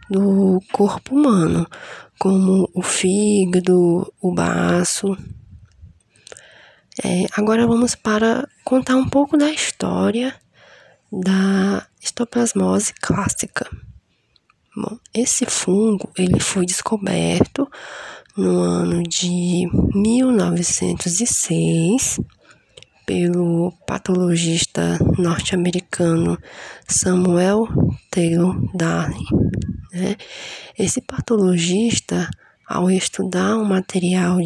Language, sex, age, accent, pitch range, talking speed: Portuguese, female, 20-39, Brazilian, 170-205 Hz, 70 wpm